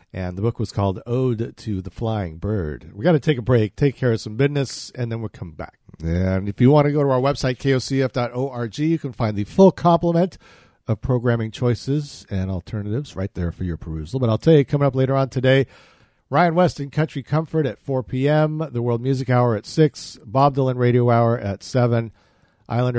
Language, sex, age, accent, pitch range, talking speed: English, male, 50-69, American, 105-150 Hz, 215 wpm